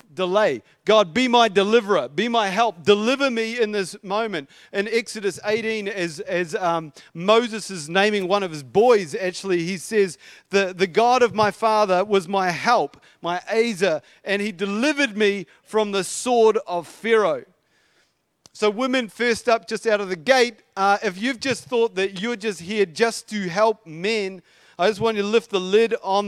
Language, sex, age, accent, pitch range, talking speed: English, male, 40-59, Australian, 180-220 Hz, 185 wpm